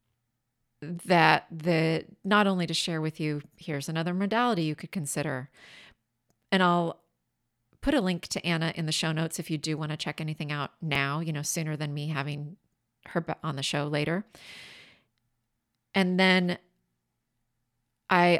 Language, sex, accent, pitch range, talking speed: English, female, American, 140-170 Hz, 155 wpm